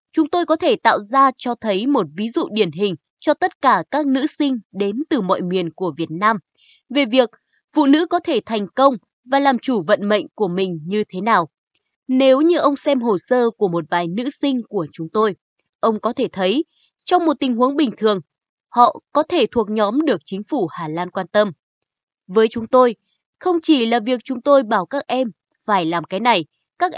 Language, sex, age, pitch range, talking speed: Vietnamese, female, 20-39, 200-285 Hz, 215 wpm